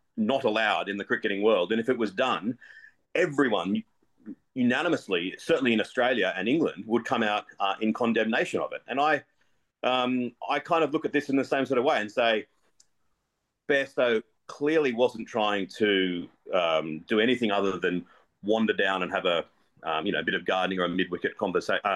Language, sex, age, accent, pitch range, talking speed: English, male, 40-59, Australian, 105-145 Hz, 190 wpm